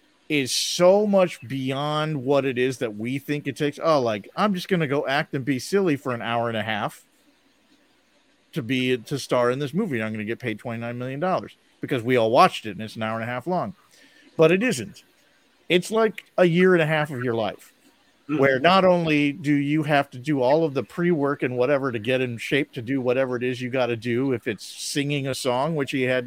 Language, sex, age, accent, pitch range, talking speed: English, male, 40-59, American, 125-180 Hz, 240 wpm